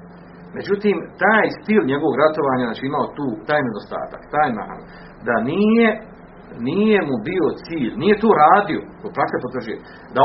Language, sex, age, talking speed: Croatian, male, 40-59, 145 wpm